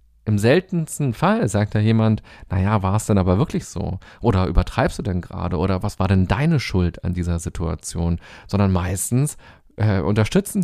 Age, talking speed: 40-59, 175 wpm